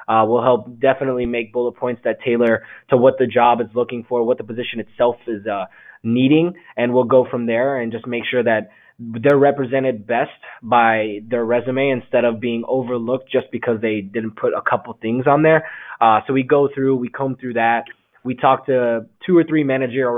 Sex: male